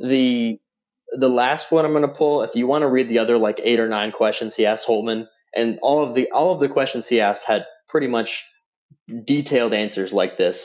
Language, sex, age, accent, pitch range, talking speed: English, male, 20-39, American, 110-150 Hz, 225 wpm